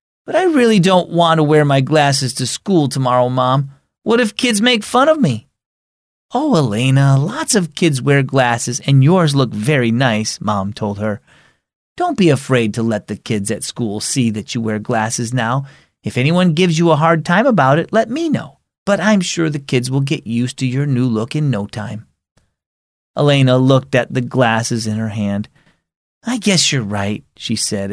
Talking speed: 195 wpm